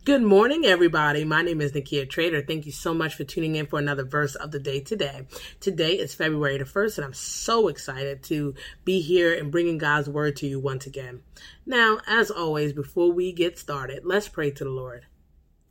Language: English